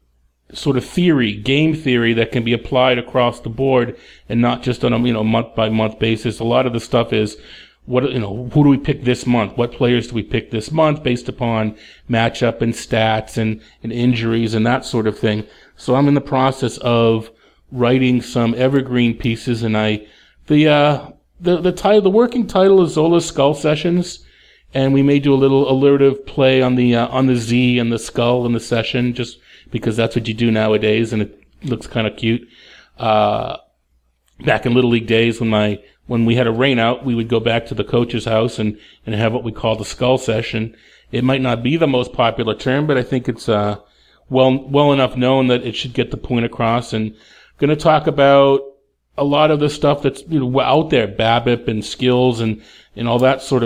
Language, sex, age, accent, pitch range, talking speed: English, male, 40-59, American, 115-135 Hz, 215 wpm